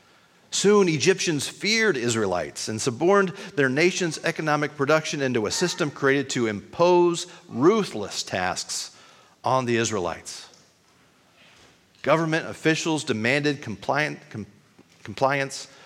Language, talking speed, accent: English, 95 wpm, American